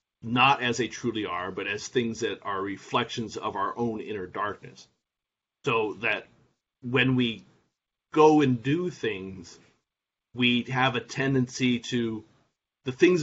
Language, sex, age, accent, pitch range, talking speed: English, male, 30-49, American, 110-130 Hz, 140 wpm